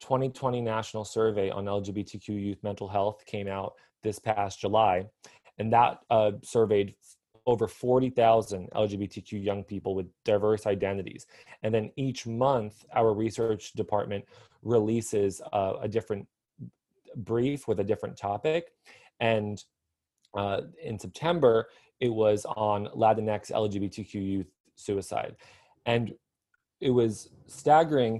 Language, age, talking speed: English, 20-39, 120 wpm